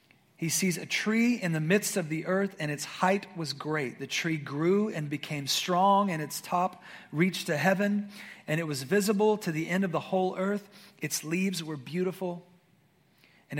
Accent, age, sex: American, 30-49, male